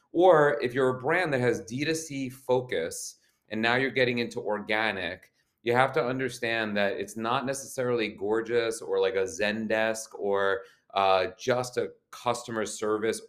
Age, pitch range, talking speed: 30-49, 105-125 Hz, 155 wpm